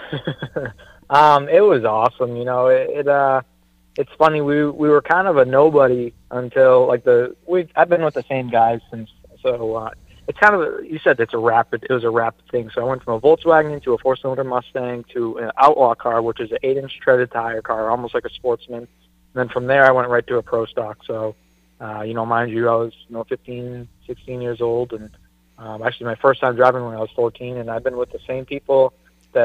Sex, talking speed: male, 230 wpm